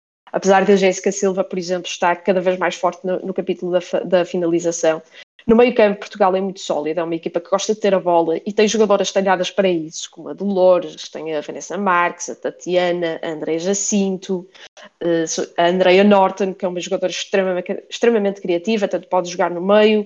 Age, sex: 20-39, female